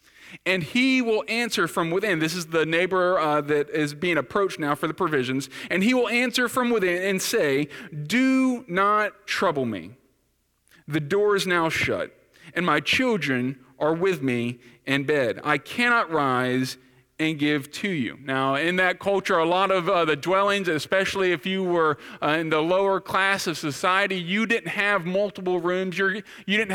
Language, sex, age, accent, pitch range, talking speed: English, male, 40-59, American, 160-205 Hz, 175 wpm